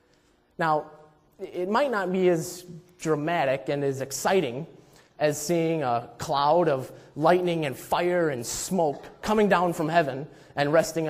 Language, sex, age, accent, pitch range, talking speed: English, male, 30-49, American, 155-195 Hz, 140 wpm